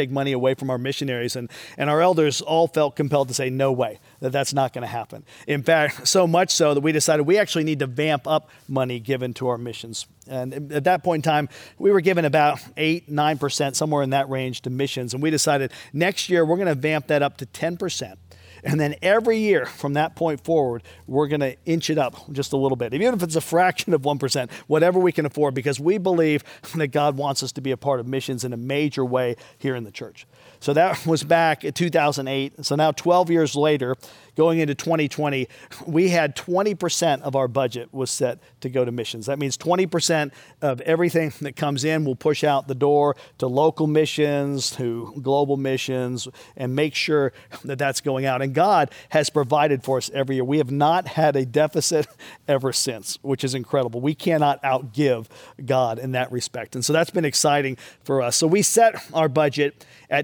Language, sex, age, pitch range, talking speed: English, male, 40-59, 130-155 Hz, 210 wpm